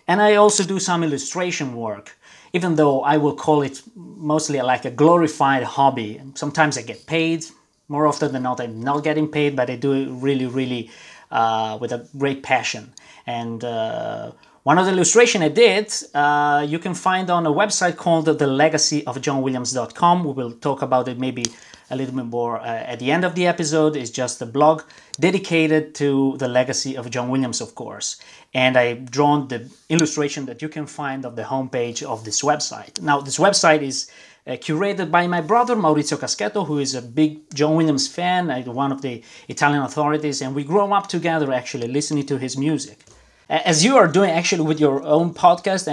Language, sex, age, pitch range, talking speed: English, male, 30-49, 130-155 Hz, 195 wpm